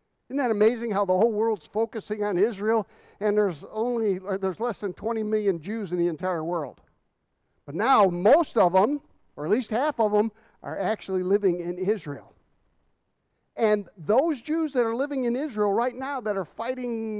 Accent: American